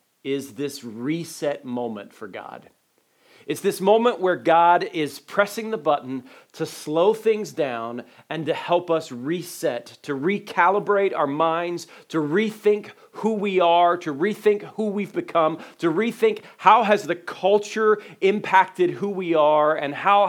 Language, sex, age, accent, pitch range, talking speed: English, male, 40-59, American, 140-185 Hz, 150 wpm